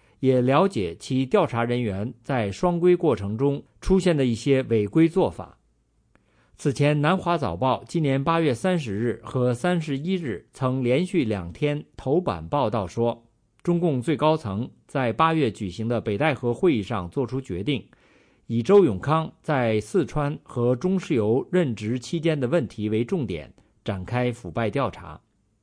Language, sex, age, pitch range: English, male, 50-69, 110-165 Hz